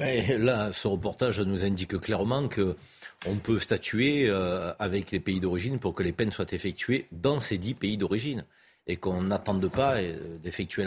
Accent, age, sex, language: French, 50-69, male, French